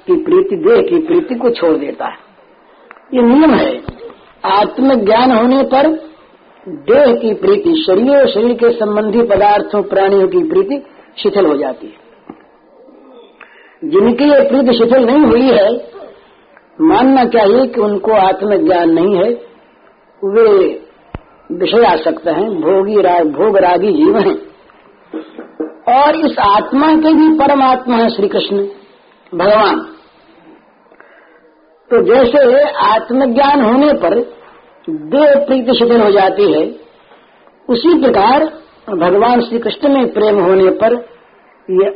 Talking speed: 120 wpm